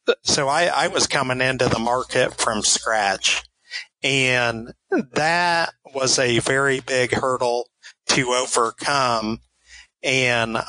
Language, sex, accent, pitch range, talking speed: English, male, American, 120-135 Hz, 110 wpm